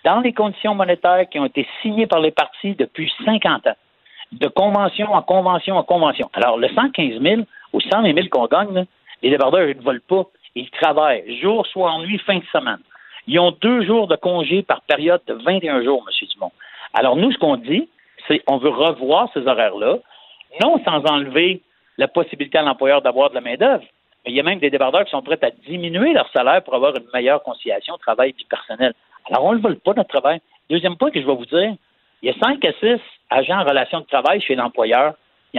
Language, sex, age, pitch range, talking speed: French, male, 60-79, 150-205 Hz, 220 wpm